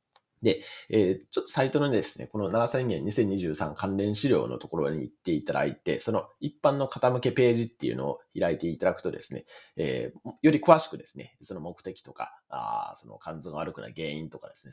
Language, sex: Japanese, male